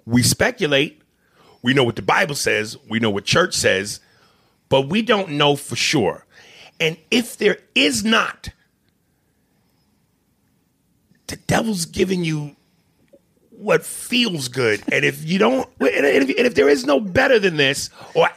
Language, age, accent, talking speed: English, 40-59, American, 145 wpm